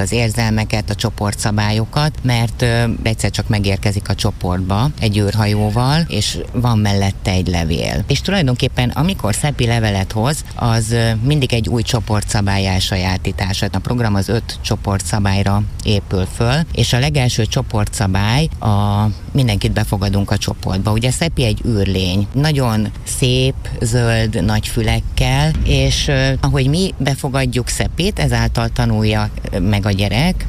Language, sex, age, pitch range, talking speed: Hungarian, female, 30-49, 100-125 Hz, 135 wpm